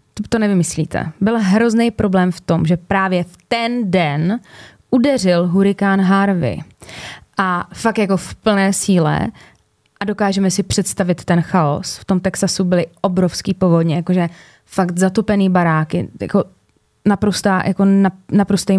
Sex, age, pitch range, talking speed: female, 20-39, 170-205 Hz, 130 wpm